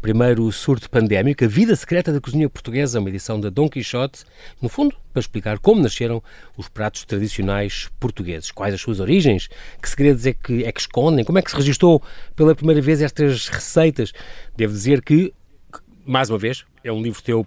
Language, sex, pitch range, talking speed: Portuguese, male, 110-155 Hz, 190 wpm